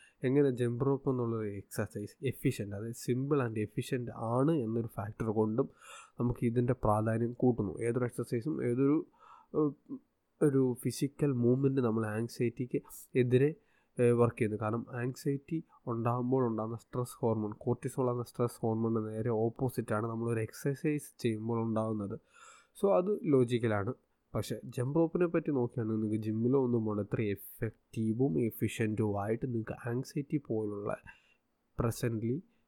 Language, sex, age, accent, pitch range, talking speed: Malayalam, male, 20-39, native, 110-130 Hz, 110 wpm